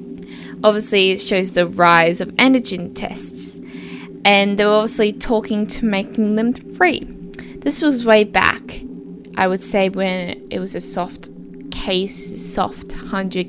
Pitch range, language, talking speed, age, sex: 175-210 Hz, English, 140 wpm, 20-39, female